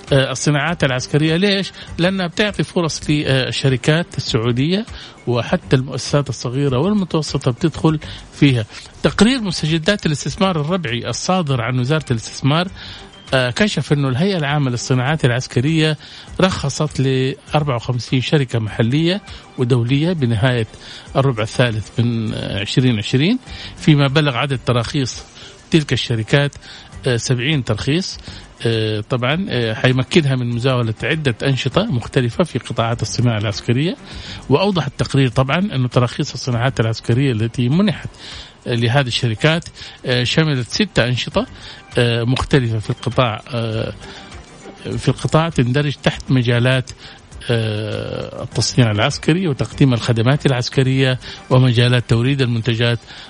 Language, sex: Arabic, male